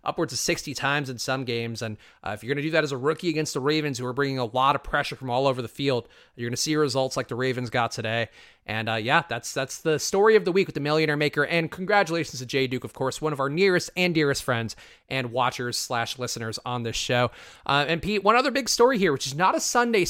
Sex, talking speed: male, 270 wpm